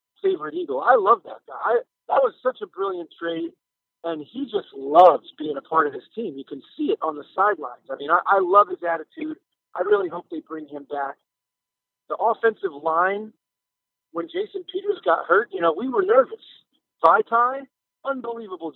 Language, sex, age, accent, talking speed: English, male, 40-59, American, 185 wpm